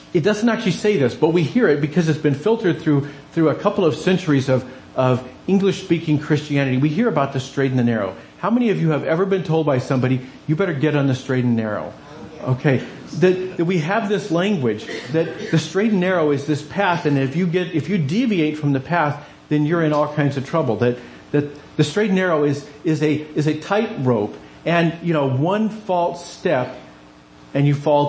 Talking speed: 220 wpm